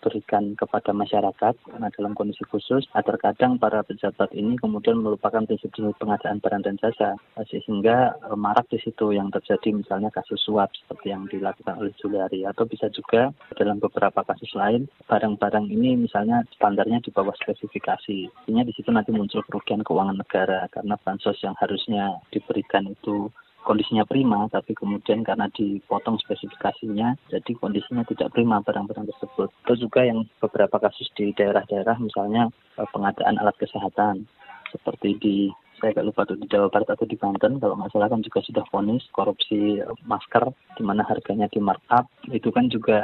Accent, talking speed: native, 160 wpm